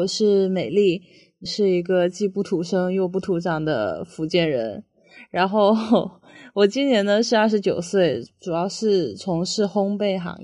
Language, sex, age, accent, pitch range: Chinese, female, 20-39, native, 175-215 Hz